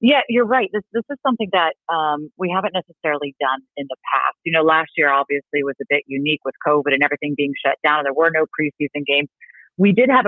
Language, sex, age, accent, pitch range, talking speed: English, female, 40-59, American, 155-205 Hz, 240 wpm